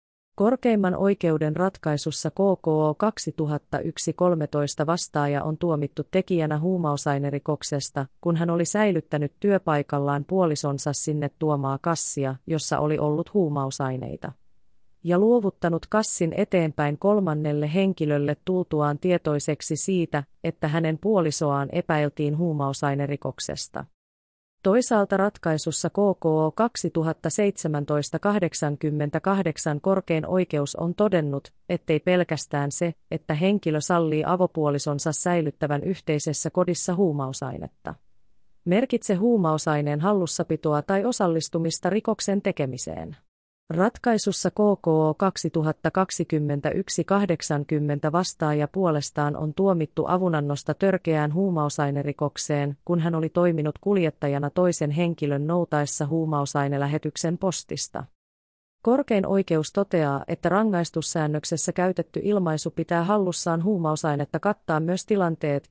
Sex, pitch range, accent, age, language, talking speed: female, 150-185 Hz, native, 30-49, Finnish, 90 wpm